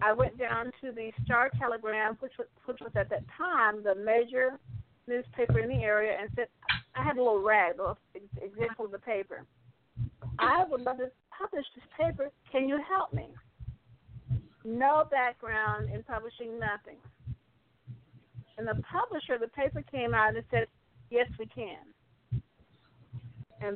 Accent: American